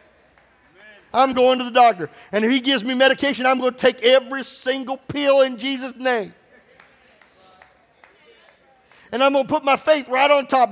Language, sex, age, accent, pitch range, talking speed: English, male, 50-69, American, 255-295 Hz, 175 wpm